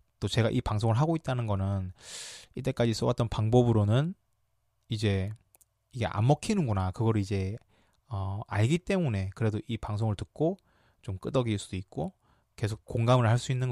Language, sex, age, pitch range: Korean, male, 20-39, 105-135 Hz